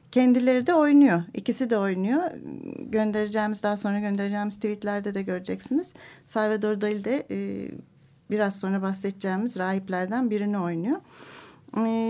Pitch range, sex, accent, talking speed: 205-260 Hz, female, native, 120 wpm